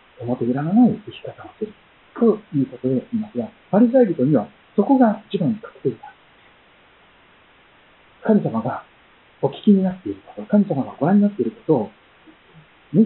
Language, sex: Japanese, male